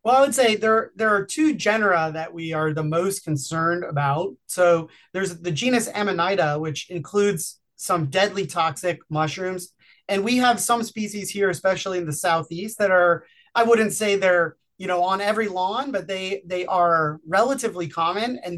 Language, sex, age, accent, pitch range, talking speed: English, male, 30-49, American, 170-225 Hz, 180 wpm